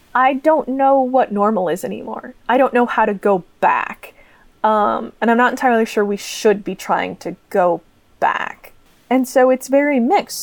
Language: English